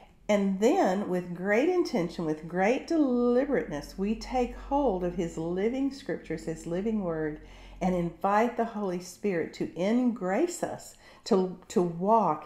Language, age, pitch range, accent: English, 50-69, 160-215 Hz, American